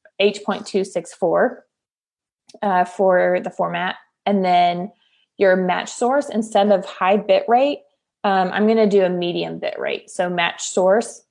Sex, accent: female, American